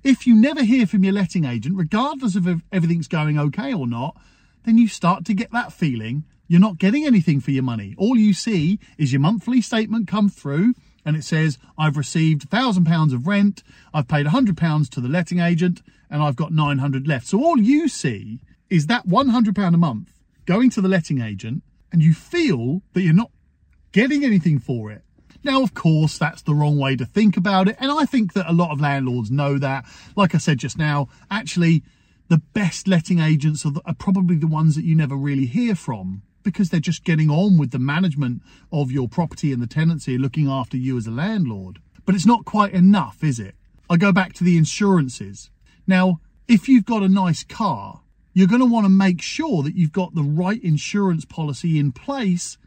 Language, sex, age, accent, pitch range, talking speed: English, male, 40-59, British, 145-200 Hz, 205 wpm